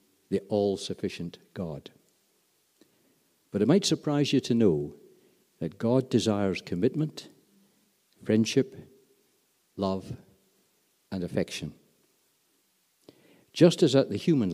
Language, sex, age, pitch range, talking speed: English, male, 60-79, 100-145 Hz, 100 wpm